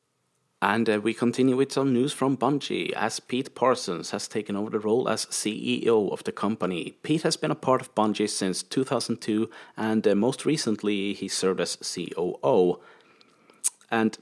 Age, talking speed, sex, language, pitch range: 30-49, 170 wpm, male, English, 95-130 Hz